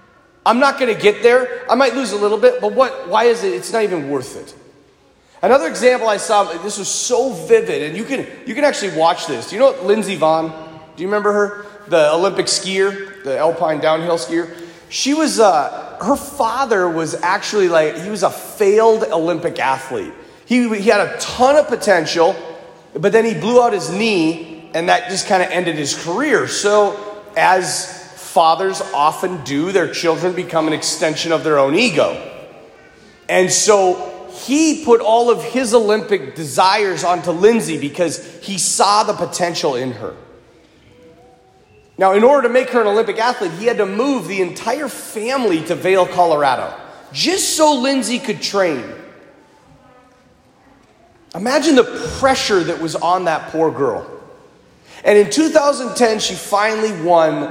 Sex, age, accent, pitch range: male, 30-49, American, 170-245 Hz